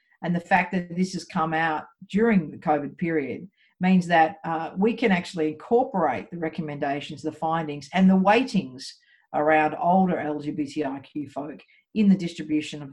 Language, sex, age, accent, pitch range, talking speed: English, female, 50-69, Australian, 150-195 Hz, 160 wpm